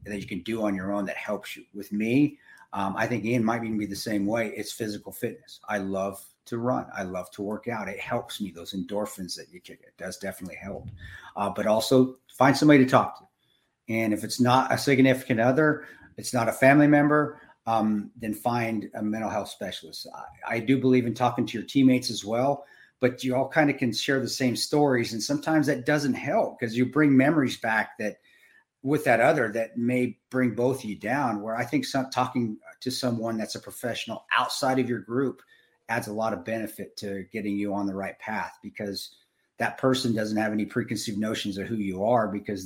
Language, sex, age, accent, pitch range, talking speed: English, male, 40-59, American, 105-125 Hz, 215 wpm